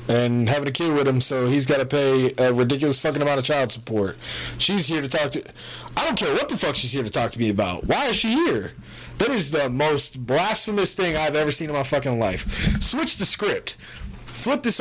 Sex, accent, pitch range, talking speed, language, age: male, American, 120-170 Hz, 235 wpm, English, 30-49